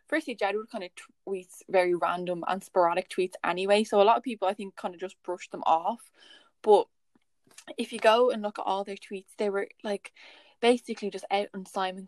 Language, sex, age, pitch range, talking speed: English, female, 10-29, 185-205 Hz, 210 wpm